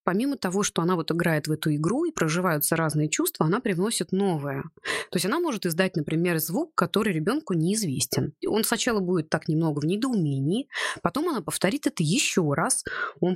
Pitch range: 160-205 Hz